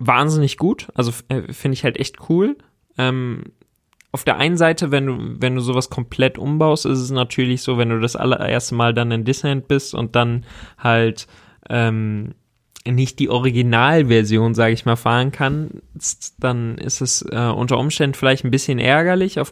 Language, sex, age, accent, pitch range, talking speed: German, male, 20-39, German, 115-135 Hz, 175 wpm